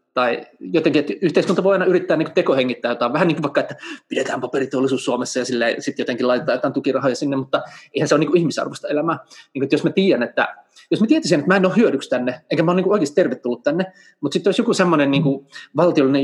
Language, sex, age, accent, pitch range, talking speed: Finnish, male, 20-39, native, 130-185 Hz, 220 wpm